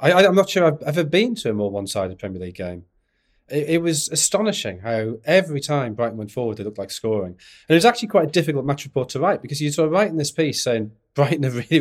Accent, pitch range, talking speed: British, 115-190 Hz, 255 wpm